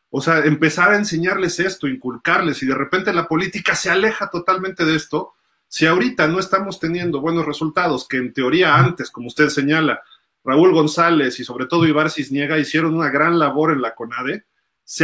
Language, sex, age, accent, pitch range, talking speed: Spanish, male, 40-59, Mexican, 135-170 Hz, 185 wpm